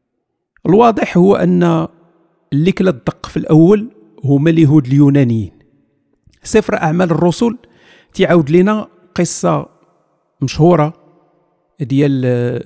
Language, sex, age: Arabic, male, 50-69